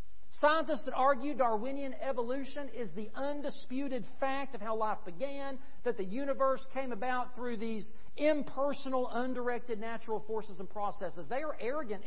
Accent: American